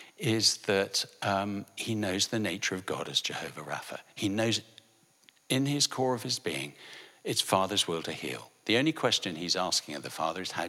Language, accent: English, British